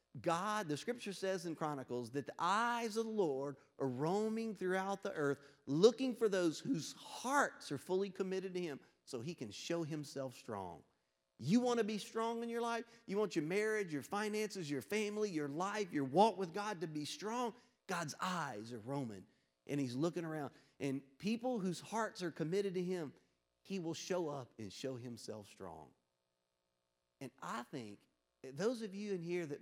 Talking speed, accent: 185 wpm, American